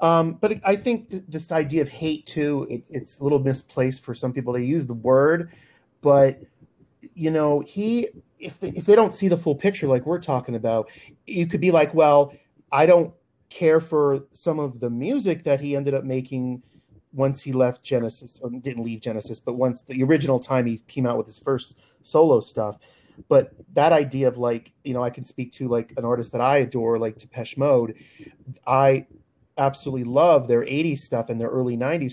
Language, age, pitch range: English, 30-49, 120-150 Hz